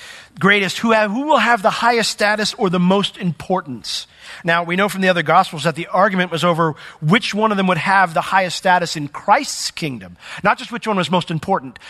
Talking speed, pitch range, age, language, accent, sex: 220 wpm, 140-185 Hz, 40-59, English, American, male